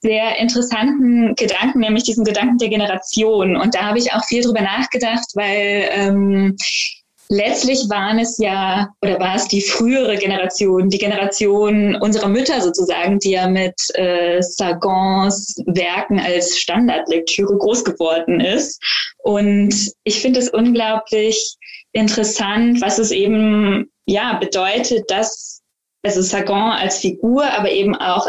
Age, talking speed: 20-39, 135 wpm